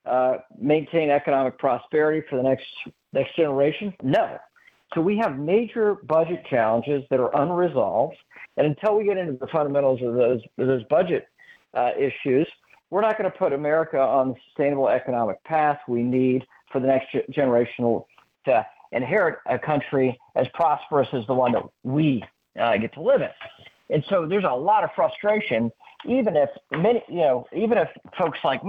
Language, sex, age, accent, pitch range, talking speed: English, male, 50-69, American, 130-175 Hz, 175 wpm